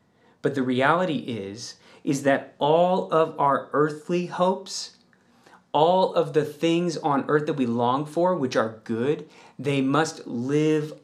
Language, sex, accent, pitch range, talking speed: English, male, American, 130-165 Hz, 145 wpm